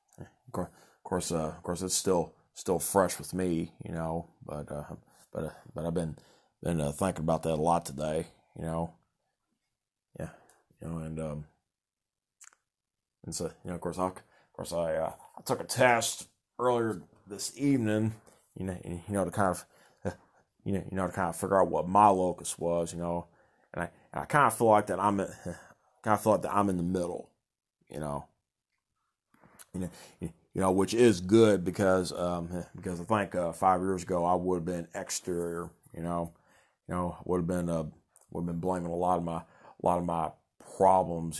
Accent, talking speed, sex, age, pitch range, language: American, 200 wpm, male, 30-49, 85-95 Hz, English